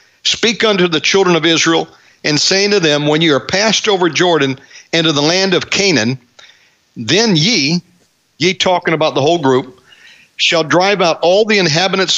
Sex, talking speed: male, 170 wpm